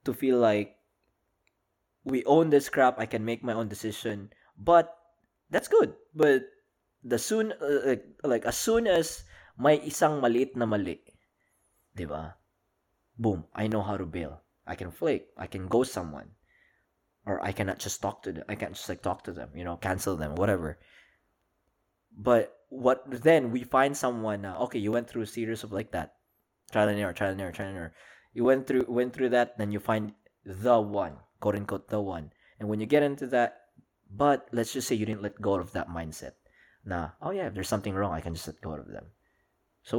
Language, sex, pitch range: Filipino, male, 95-120 Hz